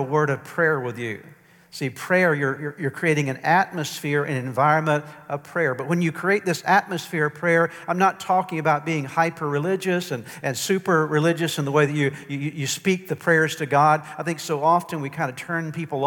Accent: American